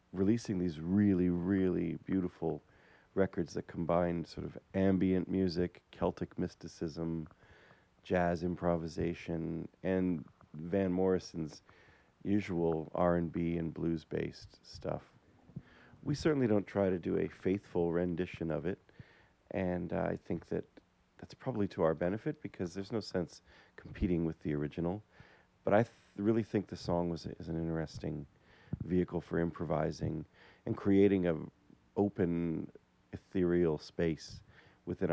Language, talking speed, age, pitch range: English, 130 wpm, 40-59, 85-100 Hz